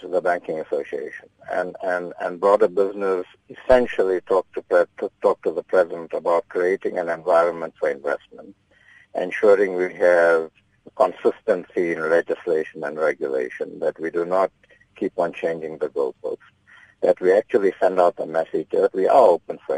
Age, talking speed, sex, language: 50-69, 145 wpm, male, English